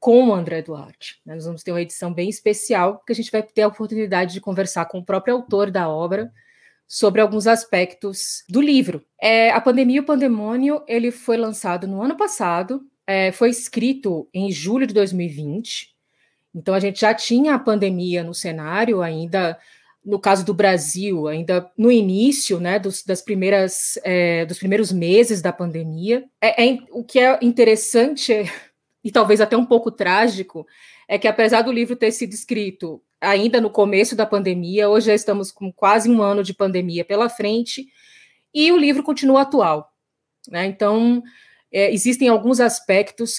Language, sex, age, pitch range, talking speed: Portuguese, female, 20-39, 185-235 Hz, 170 wpm